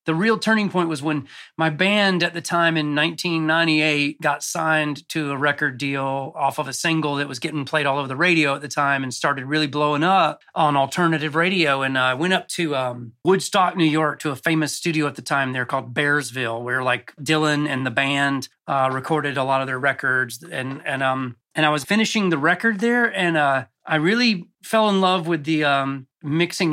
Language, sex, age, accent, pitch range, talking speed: English, male, 30-49, American, 135-170 Hz, 215 wpm